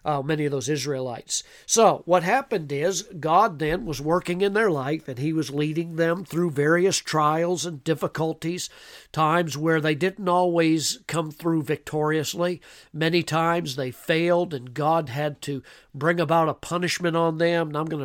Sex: male